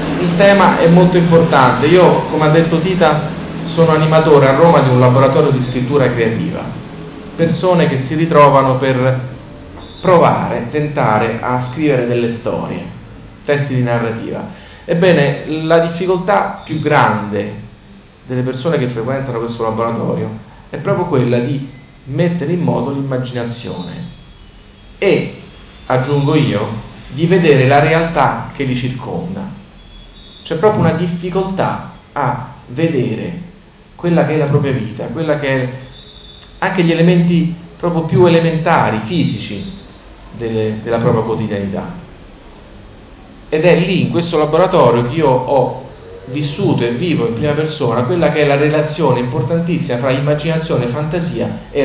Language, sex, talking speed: Italian, male, 130 wpm